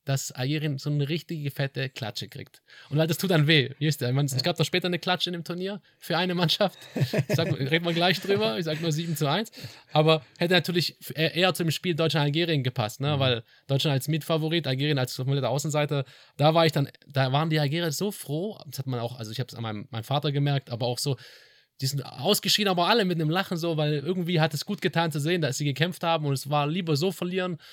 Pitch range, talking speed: 130-160 Hz, 235 wpm